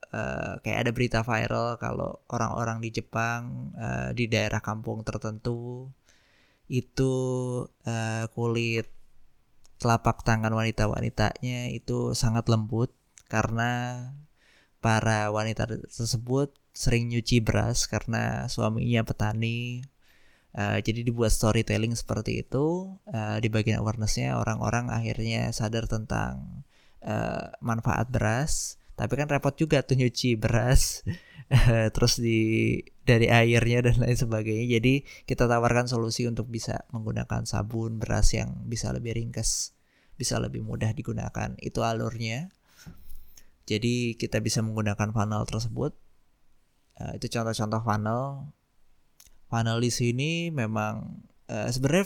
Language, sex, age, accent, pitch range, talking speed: Indonesian, male, 20-39, native, 110-120 Hz, 115 wpm